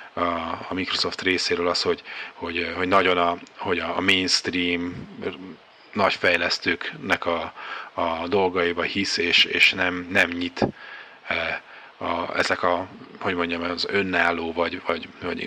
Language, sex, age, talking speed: Hungarian, male, 30-49, 135 wpm